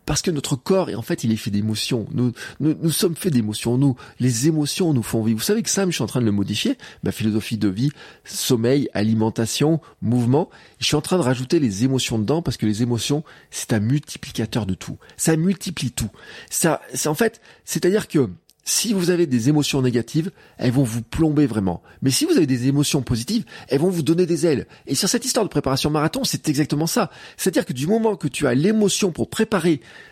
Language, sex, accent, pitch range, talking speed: French, male, French, 125-185 Hz, 220 wpm